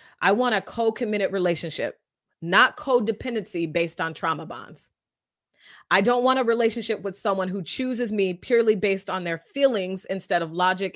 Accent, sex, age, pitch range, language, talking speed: American, female, 30-49, 180-220 Hz, English, 160 wpm